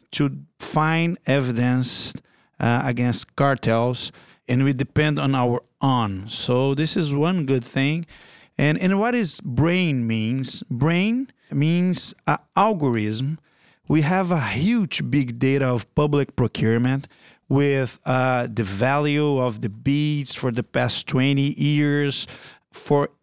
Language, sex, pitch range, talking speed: English, male, 130-155 Hz, 130 wpm